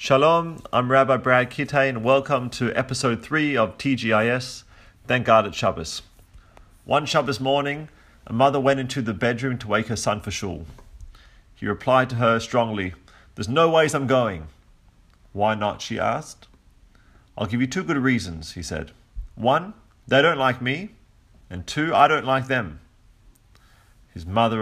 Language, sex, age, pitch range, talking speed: English, male, 40-59, 100-130 Hz, 160 wpm